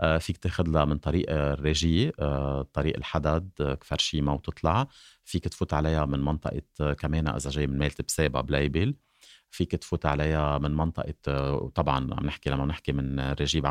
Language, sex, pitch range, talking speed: Arabic, male, 70-85 Hz, 145 wpm